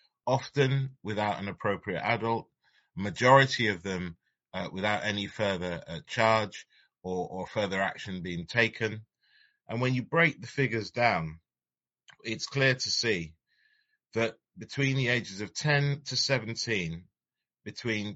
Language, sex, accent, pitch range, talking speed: English, male, British, 100-130 Hz, 130 wpm